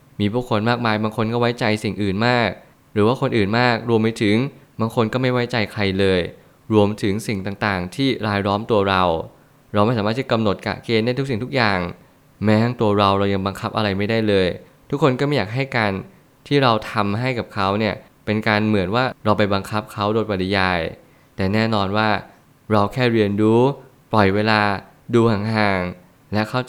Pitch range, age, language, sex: 105-125 Hz, 20-39, Thai, male